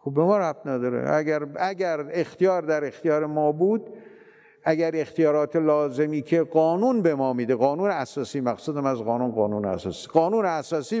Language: Persian